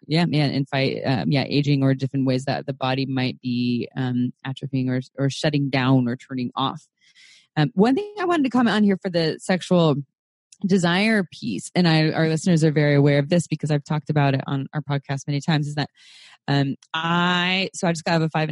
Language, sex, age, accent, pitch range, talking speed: English, female, 20-39, American, 140-170 Hz, 215 wpm